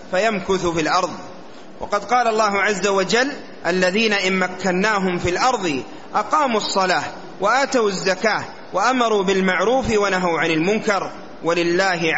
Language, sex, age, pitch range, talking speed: Arabic, male, 30-49, 190-230 Hz, 115 wpm